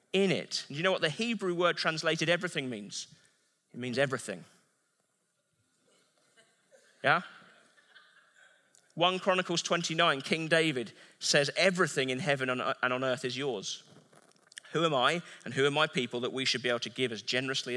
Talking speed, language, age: 160 wpm, English, 30-49